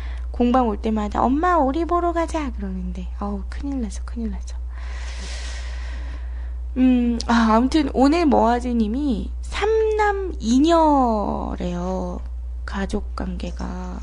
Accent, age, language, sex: native, 20-39, Korean, female